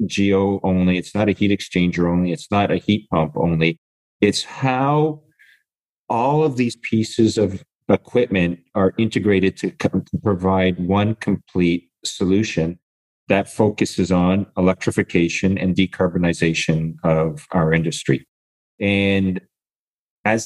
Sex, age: male, 40-59